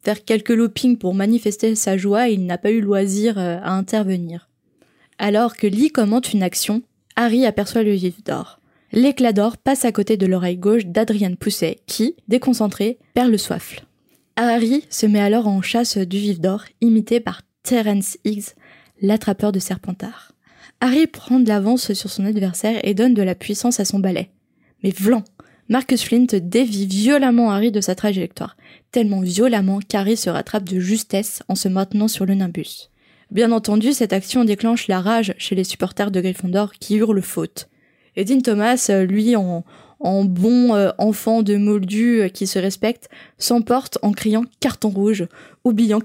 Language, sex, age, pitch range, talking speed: French, female, 20-39, 195-230 Hz, 165 wpm